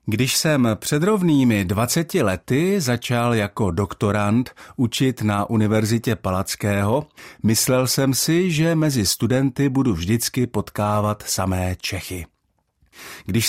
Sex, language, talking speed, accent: male, Czech, 110 wpm, native